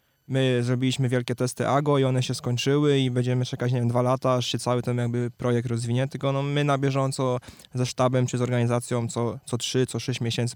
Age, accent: 20-39, native